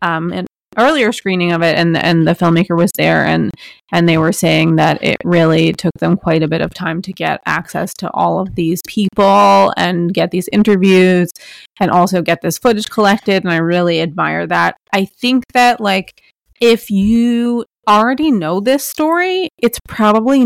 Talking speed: 180 wpm